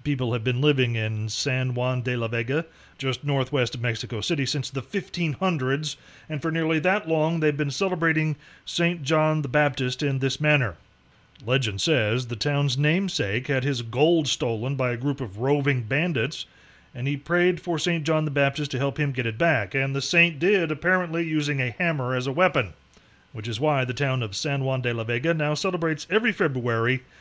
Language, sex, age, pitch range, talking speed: English, male, 40-59, 130-165 Hz, 195 wpm